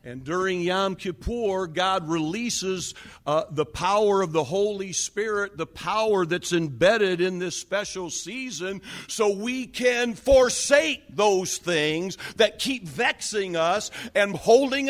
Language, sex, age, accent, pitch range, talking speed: English, male, 50-69, American, 135-200 Hz, 135 wpm